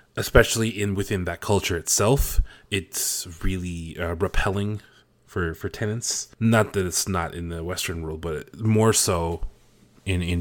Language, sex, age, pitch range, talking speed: English, male, 20-39, 85-105 Hz, 150 wpm